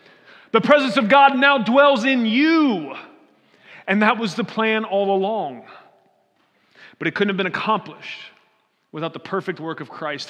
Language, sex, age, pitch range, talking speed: English, male, 30-49, 165-205 Hz, 155 wpm